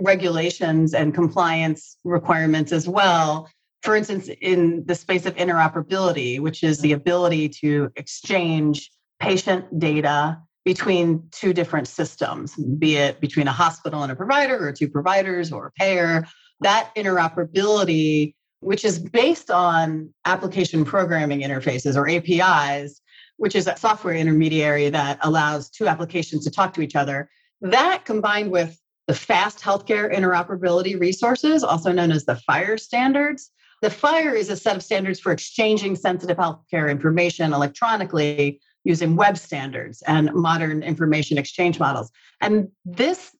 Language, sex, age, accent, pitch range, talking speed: English, female, 40-59, American, 155-195 Hz, 140 wpm